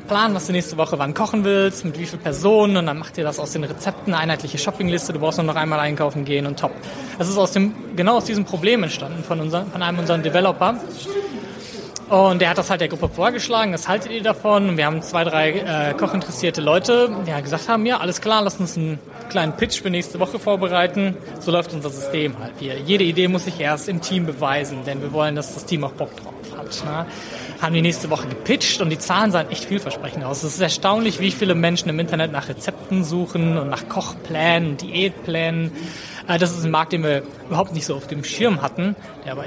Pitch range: 155-195 Hz